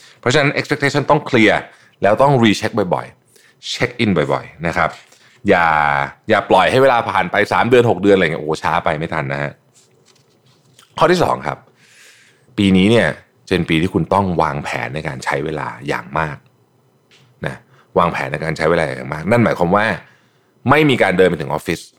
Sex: male